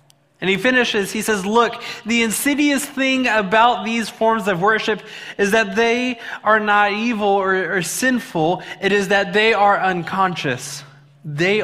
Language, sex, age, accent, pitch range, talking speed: English, male, 20-39, American, 180-230 Hz, 155 wpm